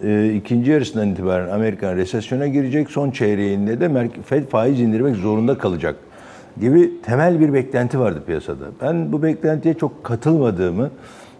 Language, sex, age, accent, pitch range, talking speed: Turkish, male, 50-69, native, 110-155 Hz, 130 wpm